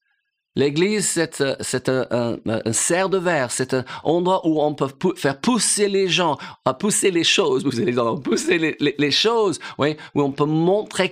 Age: 50-69